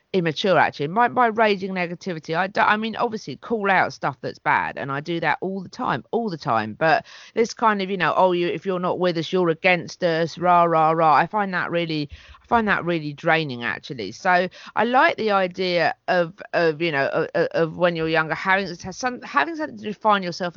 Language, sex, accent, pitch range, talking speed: English, female, British, 145-190 Hz, 220 wpm